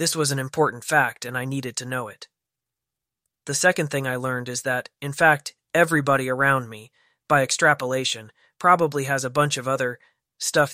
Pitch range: 125-150 Hz